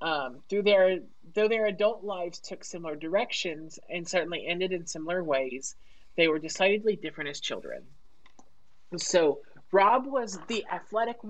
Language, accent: English, American